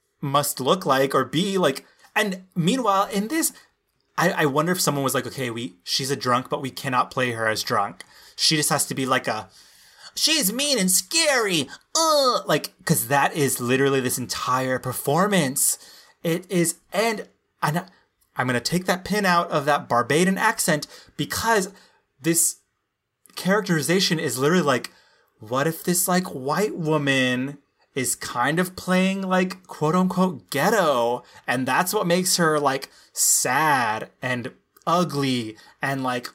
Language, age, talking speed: English, 30-49, 155 wpm